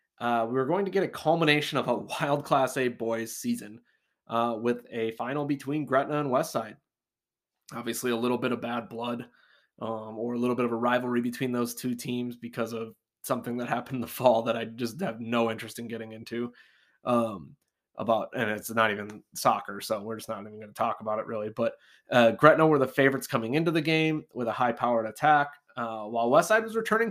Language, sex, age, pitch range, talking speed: English, male, 20-39, 115-145 Hz, 215 wpm